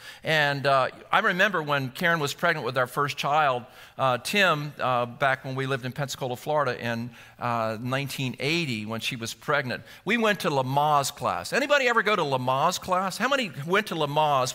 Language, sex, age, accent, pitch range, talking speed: English, male, 50-69, American, 130-180 Hz, 185 wpm